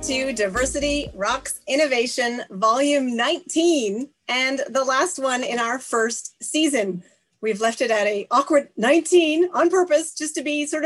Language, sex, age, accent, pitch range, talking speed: English, female, 30-49, American, 215-280 Hz, 150 wpm